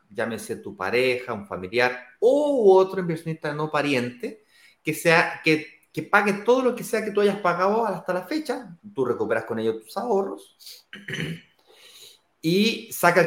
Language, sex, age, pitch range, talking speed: Spanish, male, 30-49, 135-205 Hz, 160 wpm